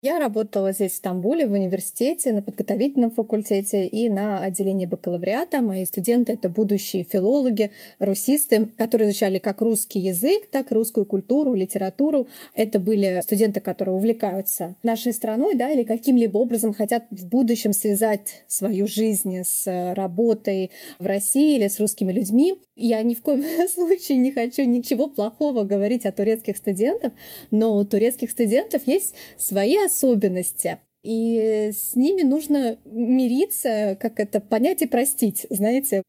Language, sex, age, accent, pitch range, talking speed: Russian, female, 20-39, native, 205-260 Hz, 145 wpm